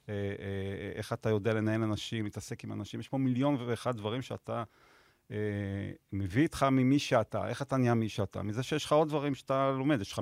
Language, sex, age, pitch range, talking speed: Hebrew, male, 40-59, 105-130 Hz, 195 wpm